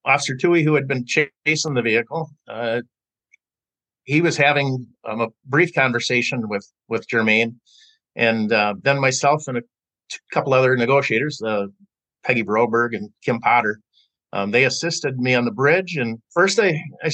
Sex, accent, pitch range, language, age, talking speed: male, American, 125-160 Hz, English, 50-69, 160 wpm